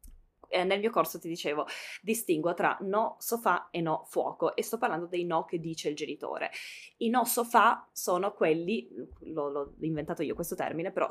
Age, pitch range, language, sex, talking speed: 20-39, 165-215 Hz, Italian, female, 175 wpm